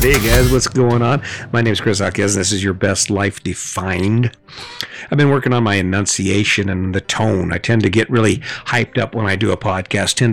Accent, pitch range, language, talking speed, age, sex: American, 105-125 Hz, English, 225 wpm, 50-69, male